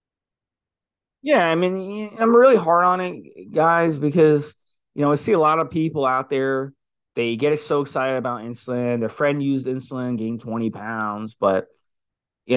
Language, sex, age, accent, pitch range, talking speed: English, male, 30-49, American, 115-145 Hz, 165 wpm